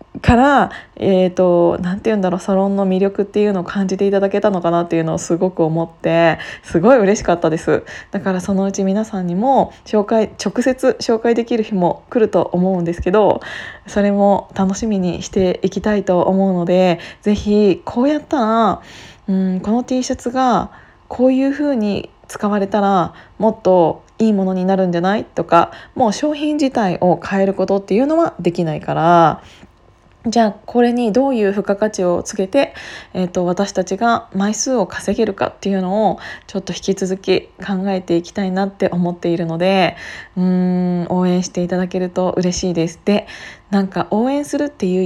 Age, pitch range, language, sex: 20-39, 180-225 Hz, Japanese, female